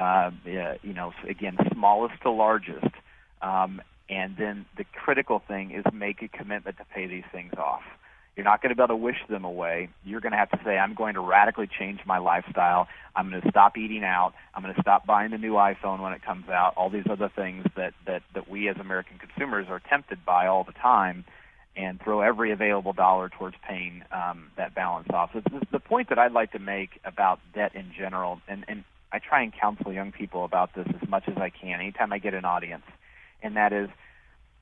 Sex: male